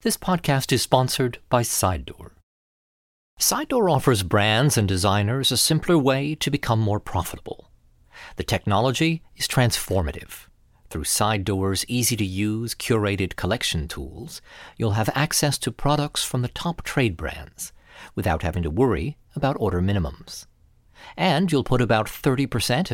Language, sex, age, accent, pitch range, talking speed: English, male, 50-69, American, 95-140 Hz, 130 wpm